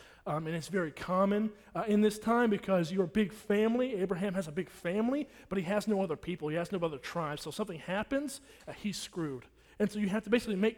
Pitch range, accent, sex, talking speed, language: 150-200 Hz, American, male, 235 wpm, English